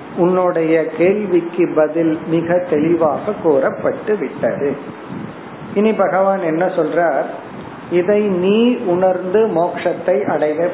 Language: Tamil